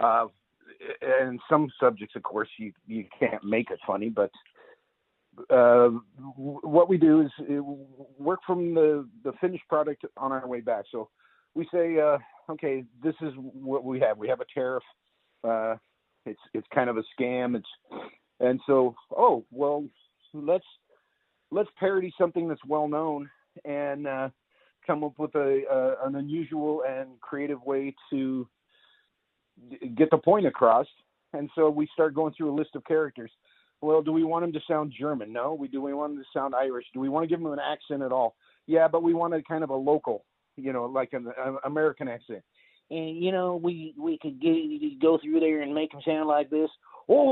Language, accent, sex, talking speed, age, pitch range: English, American, male, 190 wpm, 50-69, 135-170 Hz